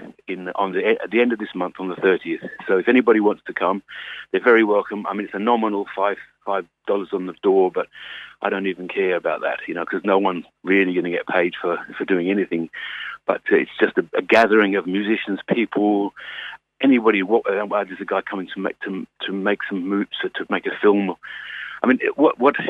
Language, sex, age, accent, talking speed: English, male, 50-69, British, 220 wpm